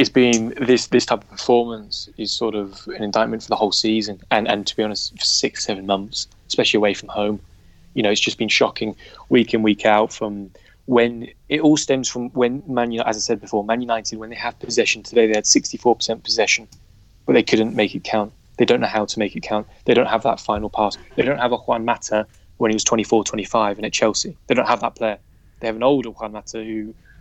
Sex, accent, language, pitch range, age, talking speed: male, British, English, 105-115 Hz, 20-39, 240 wpm